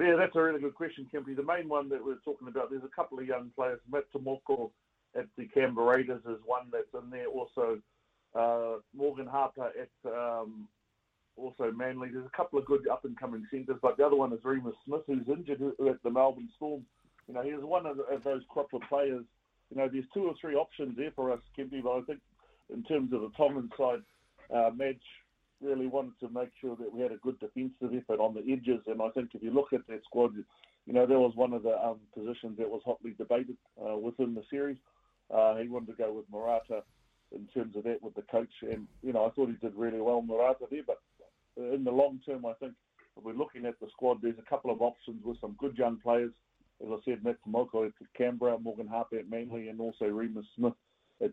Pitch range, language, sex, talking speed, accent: 115-140 Hz, English, male, 230 wpm, Australian